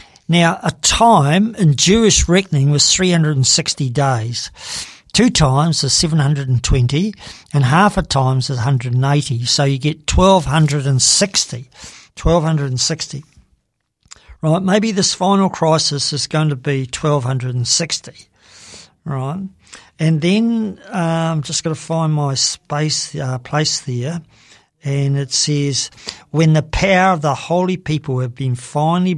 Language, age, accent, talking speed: English, 50-69, Australian, 125 wpm